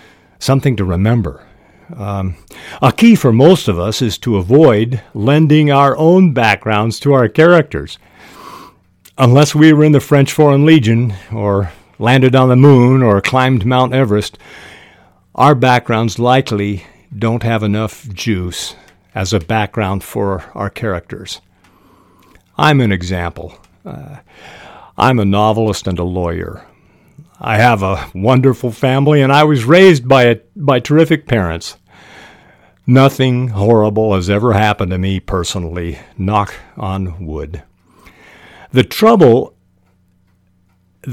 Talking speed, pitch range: 125 wpm, 95-135 Hz